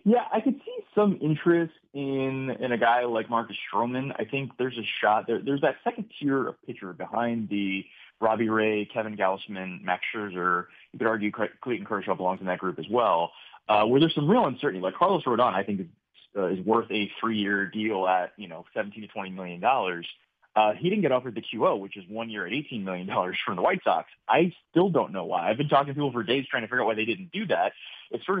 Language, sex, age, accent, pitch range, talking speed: English, male, 20-39, American, 100-135 Hz, 235 wpm